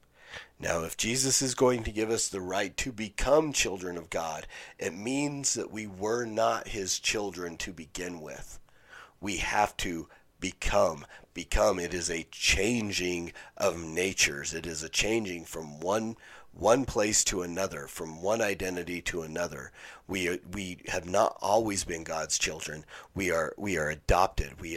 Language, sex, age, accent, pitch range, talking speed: English, male, 40-59, American, 85-110 Hz, 160 wpm